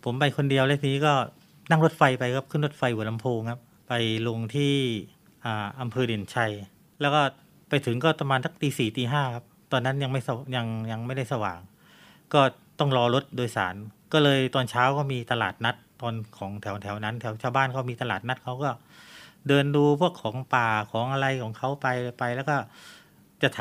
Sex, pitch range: male, 110-140 Hz